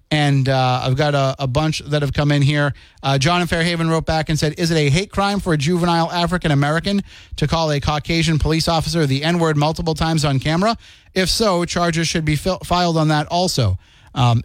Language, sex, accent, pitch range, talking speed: English, male, American, 130-165 Hz, 215 wpm